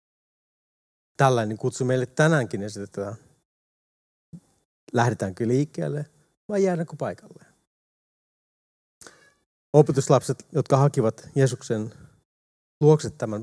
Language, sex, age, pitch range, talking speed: Finnish, male, 30-49, 110-150 Hz, 75 wpm